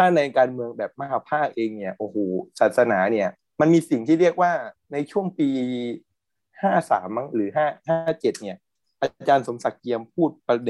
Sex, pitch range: male, 115-160 Hz